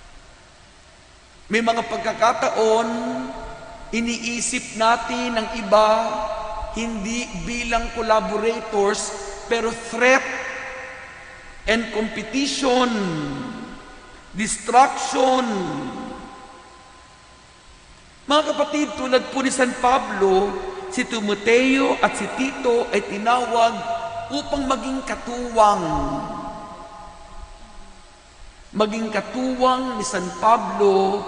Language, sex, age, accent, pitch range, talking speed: Filipino, male, 50-69, native, 210-255 Hz, 65 wpm